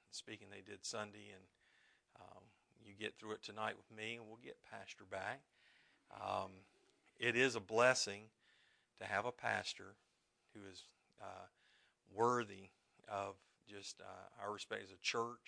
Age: 50-69